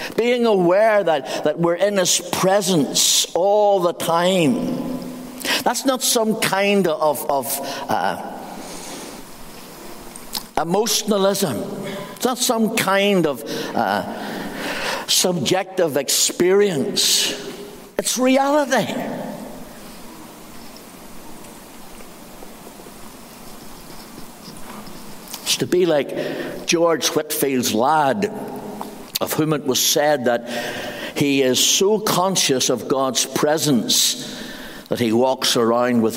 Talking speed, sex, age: 90 wpm, male, 60-79